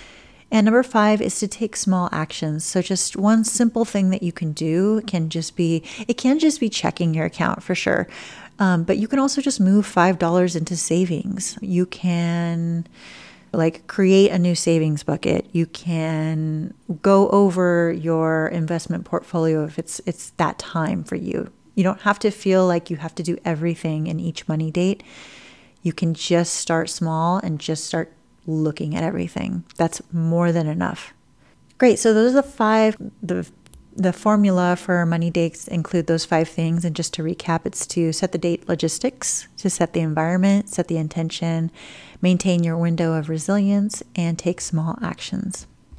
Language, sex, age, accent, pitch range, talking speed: English, female, 30-49, American, 165-195 Hz, 175 wpm